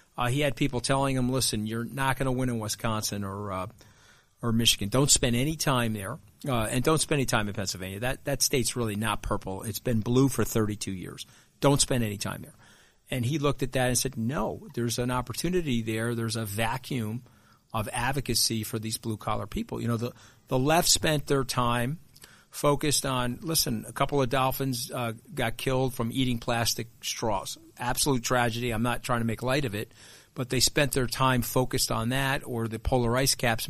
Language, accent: English, American